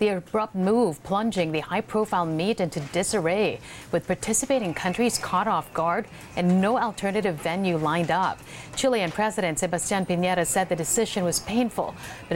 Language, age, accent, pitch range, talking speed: English, 50-69, American, 160-205 Hz, 150 wpm